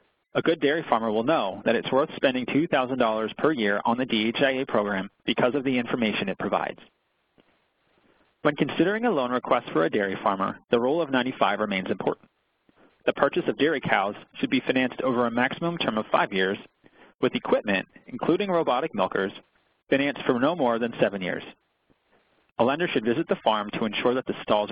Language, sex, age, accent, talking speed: English, male, 30-49, American, 185 wpm